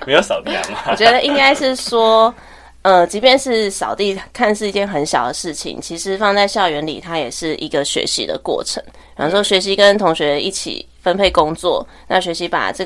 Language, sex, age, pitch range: Chinese, female, 20-39, 170-215 Hz